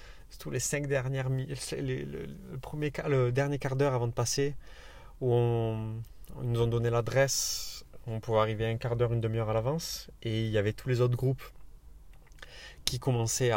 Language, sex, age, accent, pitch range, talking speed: French, male, 20-39, French, 110-135 Hz, 185 wpm